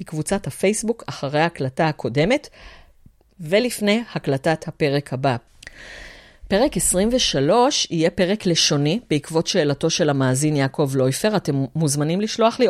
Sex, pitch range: female, 140-195 Hz